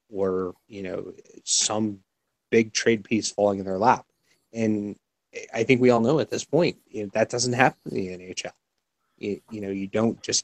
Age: 20-39